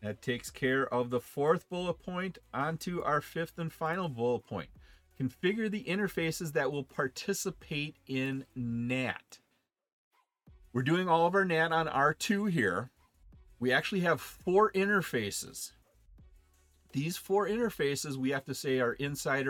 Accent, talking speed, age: American, 140 wpm, 40-59